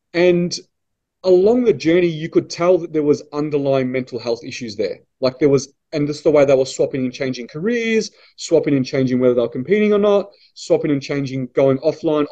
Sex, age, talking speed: male, 30-49, 200 wpm